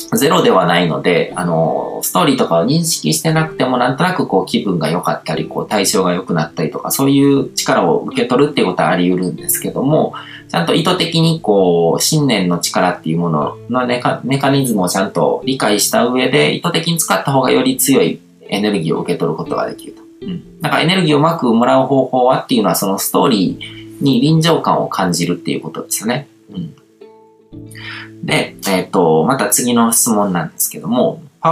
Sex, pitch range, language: male, 105-160 Hz, Japanese